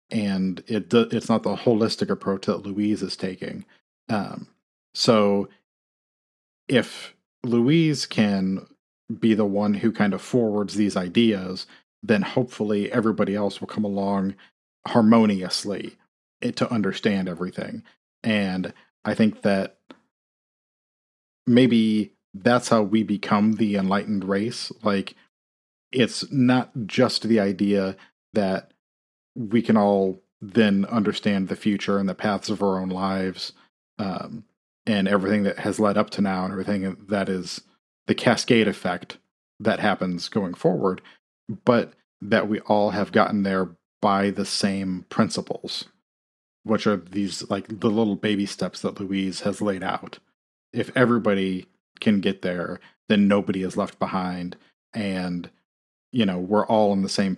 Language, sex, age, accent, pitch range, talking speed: English, male, 40-59, American, 95-110 Hz, 135 wpm